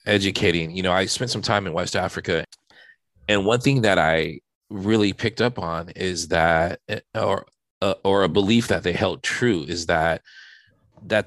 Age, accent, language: 30-49, American, English